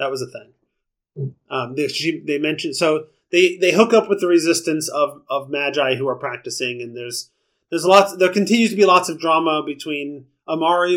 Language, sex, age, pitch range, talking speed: English, male, 30-49, 125-155 Hz, 195 wpm